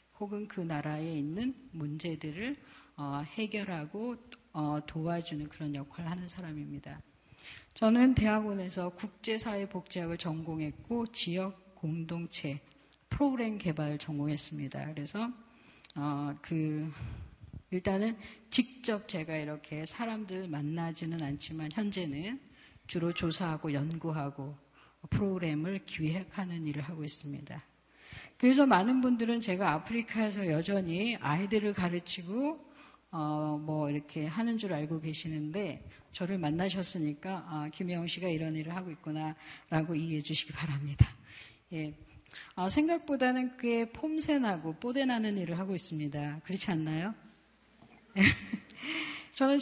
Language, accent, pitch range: Korean, native, 155-215 Hz